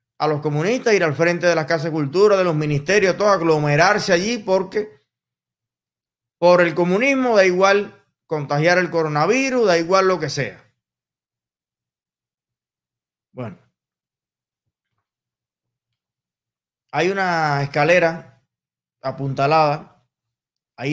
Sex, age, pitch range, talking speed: male, 20-39, 135-180 Hz, 105 wpm